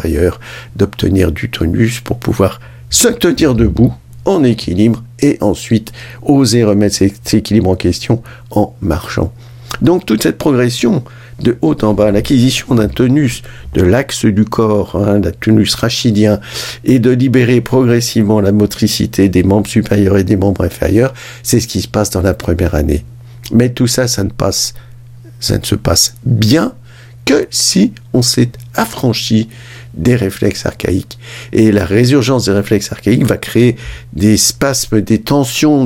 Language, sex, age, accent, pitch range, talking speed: French, male, 50-69, French, 100-120 Hz, 155 wpm